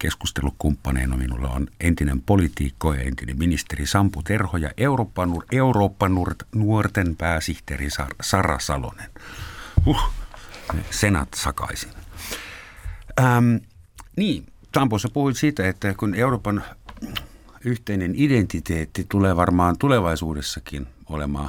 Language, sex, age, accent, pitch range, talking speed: Finnish, male, 60-79, native, 75-105 Hz, 105 wpm